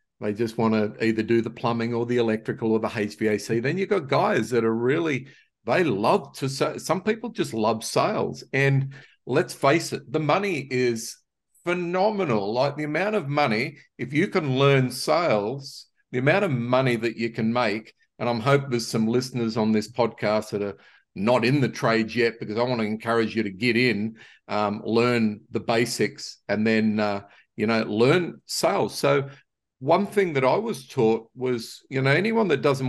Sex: male